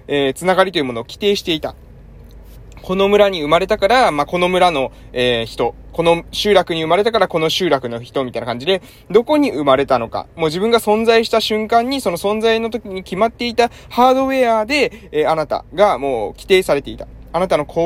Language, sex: Japanese, male